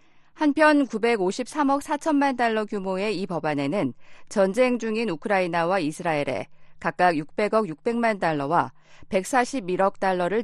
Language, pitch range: Korean, 165-230 Hz